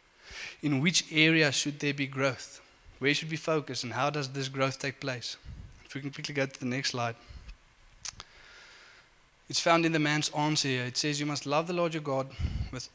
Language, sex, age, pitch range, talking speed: English, male, 20-39, 130-150 Hz, 205 wpm